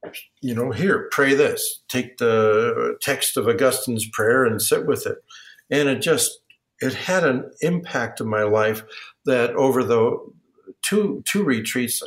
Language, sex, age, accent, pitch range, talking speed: English, male, 60-79, American, 120-185 Hz, 155 wpm